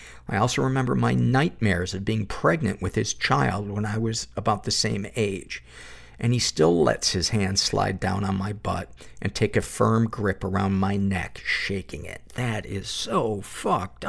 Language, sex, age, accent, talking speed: English, male, 50-69, American, 185 wpm